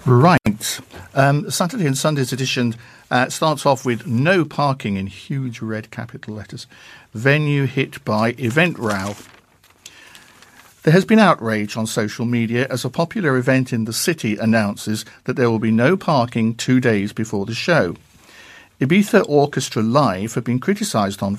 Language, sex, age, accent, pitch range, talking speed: English, male, 50-69, British, 110-140 Hz, 155 wpm